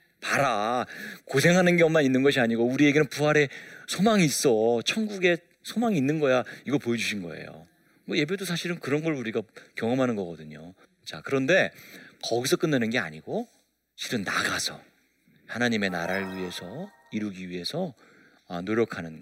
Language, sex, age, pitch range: Korean, male, 40-59, 100-140 Hz